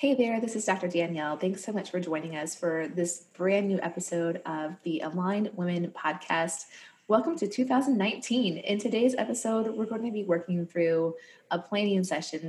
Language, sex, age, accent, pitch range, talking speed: English, female, 20-39, American, 165-210 Hz, 180 wpm